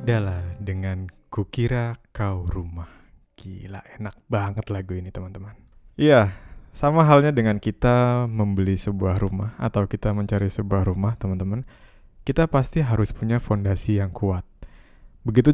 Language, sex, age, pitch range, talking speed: Indonesian, male, 20-39, 100-120 Hz, 125 wpm